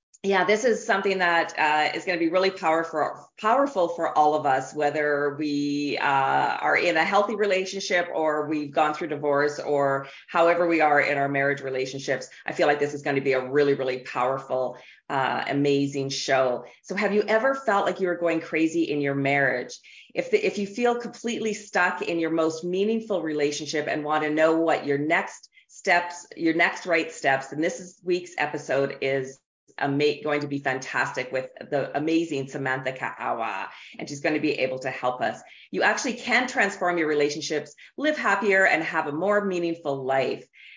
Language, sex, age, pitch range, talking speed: English, female, 40-59, 145-185 Hz, 190 wpm